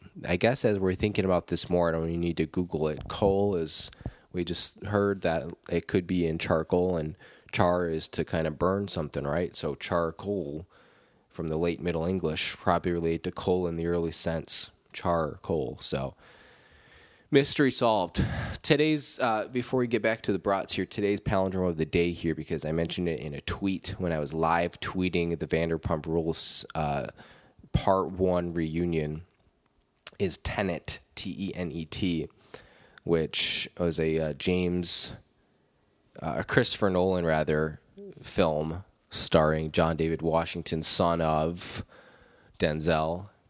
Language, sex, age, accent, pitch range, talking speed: English, male, 20-39, American, 80-95 Hz, 155 wpm